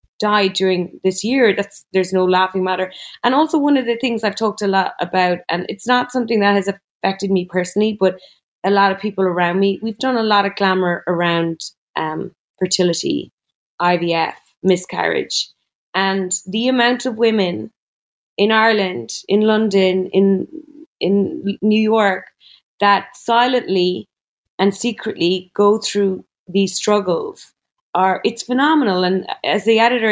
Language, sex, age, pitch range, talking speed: English, female, 30-49, 185-220 Hz, 145 wpm